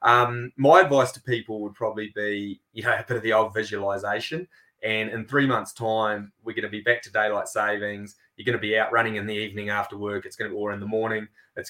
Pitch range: 100-115 Hz